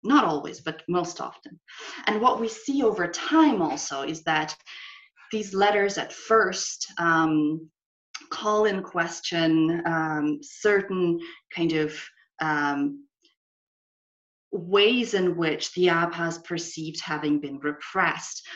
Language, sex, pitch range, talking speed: English, female, 155-205 Hz, 115 wpm